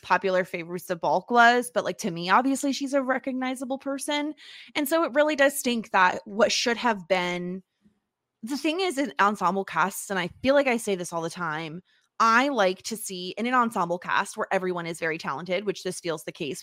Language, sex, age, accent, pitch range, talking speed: English, female, 20-39, American, 180-220 Hz, 215 wpm